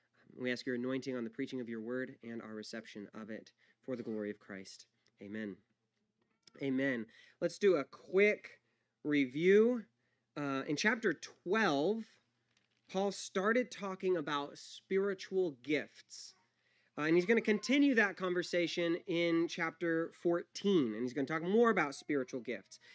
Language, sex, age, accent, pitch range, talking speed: English, male, 30-49, American, 140-195 Hz, 150 wpm